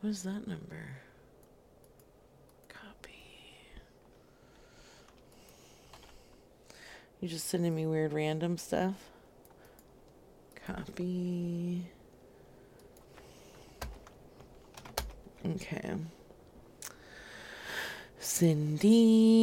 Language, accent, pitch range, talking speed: English, American, 165-225 Hz, 45 wpm